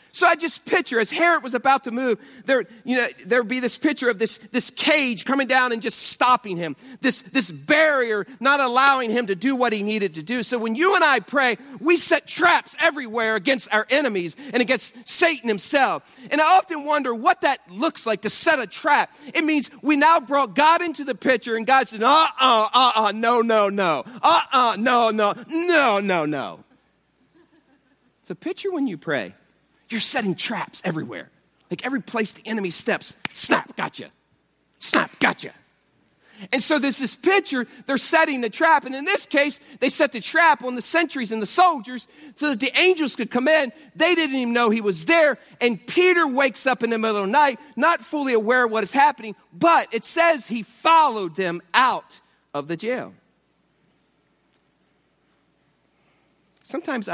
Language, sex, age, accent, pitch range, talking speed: English, male, 40-59, American, 225-300 Hz, 190 wpm